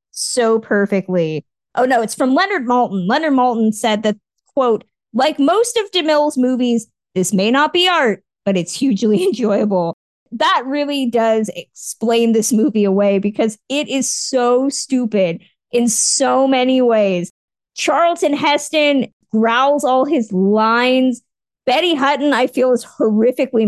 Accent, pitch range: American, 215-285 Hz